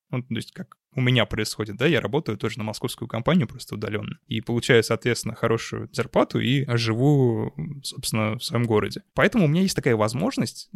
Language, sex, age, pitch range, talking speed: Russian, male, 20-39, 115-140 Hz, 185 wpm